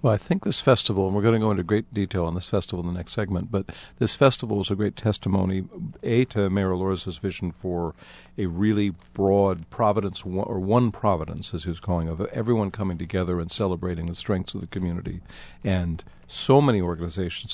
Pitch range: 85-105 Hz